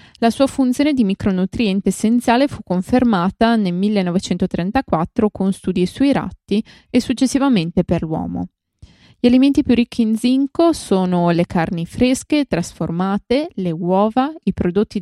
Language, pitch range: Italian, 180-245 Hz